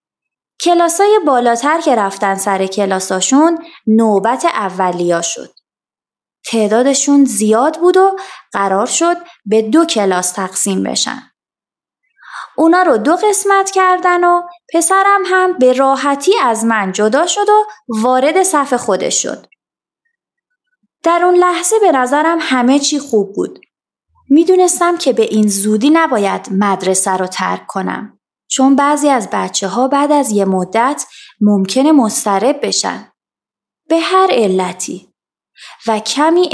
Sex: female